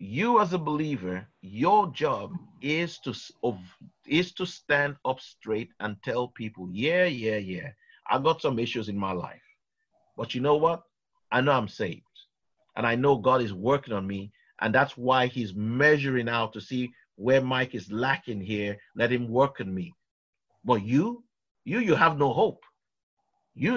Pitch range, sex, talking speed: 120-160 Hz, male, 170 wpm